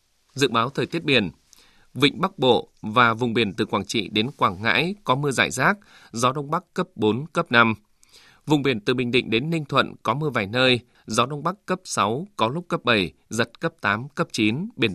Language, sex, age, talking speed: Vietnamese, male, 20-39, 220 wpm